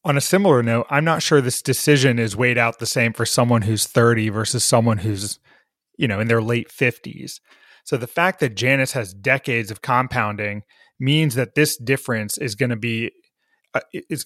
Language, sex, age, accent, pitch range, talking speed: English, male, 30-49, American, 115-145 Hz, 175 wpm